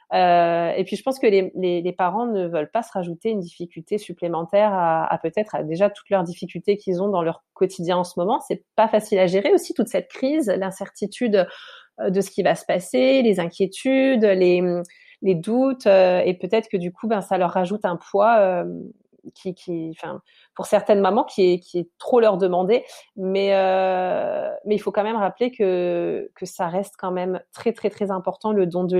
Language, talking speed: French, 205 wpm